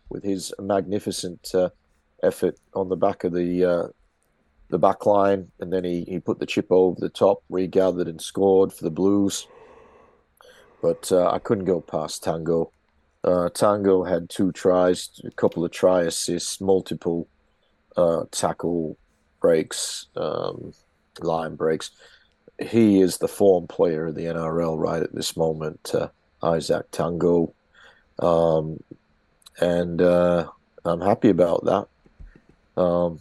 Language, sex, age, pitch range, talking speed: English, male, 40-59, 85-100 Hz, 140 wpm